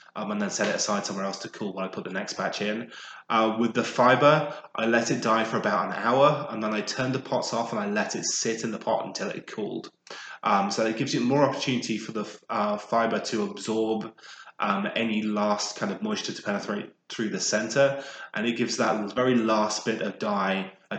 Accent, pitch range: British, 105-120 Hz